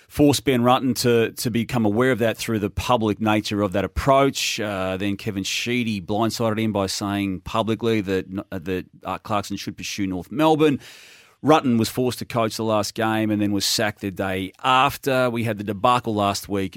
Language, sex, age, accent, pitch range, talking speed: English, male, 30-49, Australian, 100-120 Hz, 195 wpm